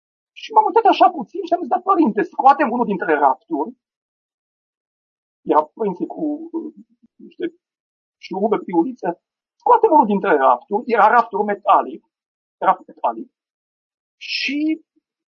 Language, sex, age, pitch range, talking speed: Romanian, male, 50-69, 220-355 Hz, 110 wpm